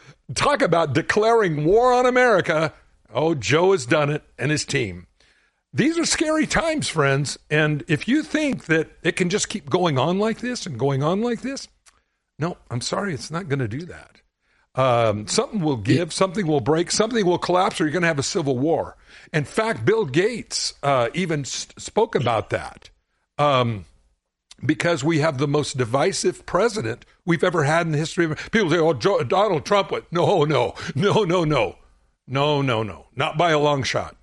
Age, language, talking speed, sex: 60-79, English, 190 wpm, male